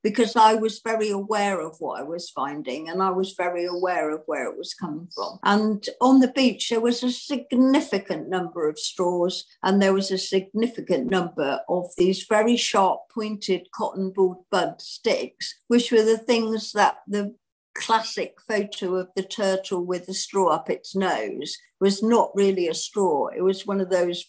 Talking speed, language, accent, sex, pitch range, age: 180 wpm, English, British, female, 185-245 Hz, 60-79